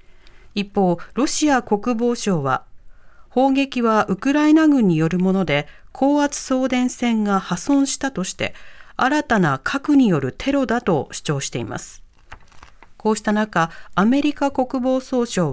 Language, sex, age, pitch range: Japanese, female, 40-59, 180-260 Hz